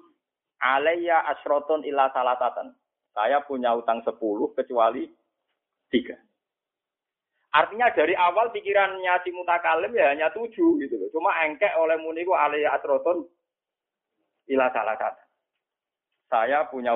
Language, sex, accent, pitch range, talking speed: Indonesian, male, native, 165-260 Hz, 115 wpm